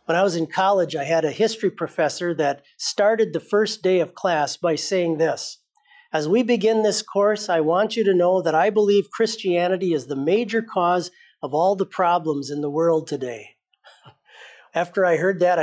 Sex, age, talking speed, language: male, 50-69, 190 wpm, English